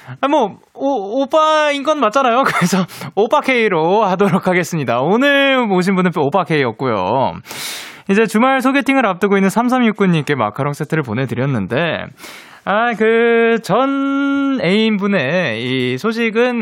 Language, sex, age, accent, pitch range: Korean, male, 20-39, native, 155-225 Hz